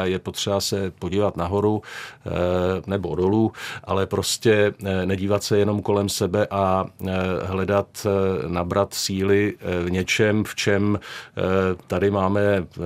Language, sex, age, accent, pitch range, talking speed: Czech, male, 50-69, native, 90-105 Hz, 110 wpm